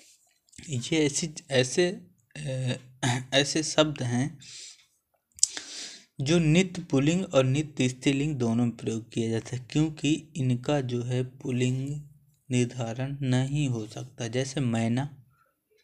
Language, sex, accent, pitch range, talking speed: Hindi, male, native, 130-160 Hz, 110 wpm